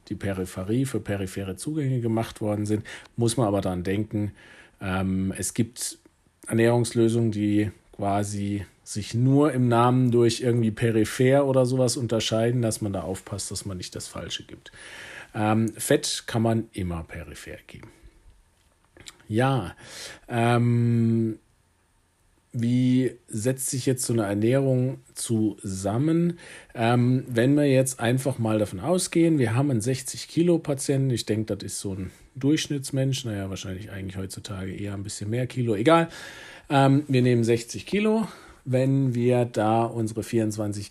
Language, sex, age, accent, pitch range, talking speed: German, male, 40-59, German, 105-130 Hz, 140 wpm